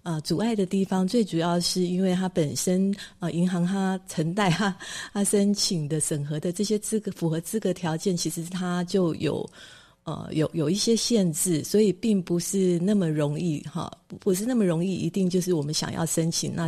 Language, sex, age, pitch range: Chinese, female, 30-49, 170-200 Hz